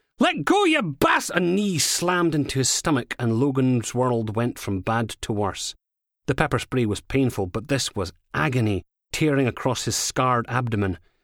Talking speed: 170 wpm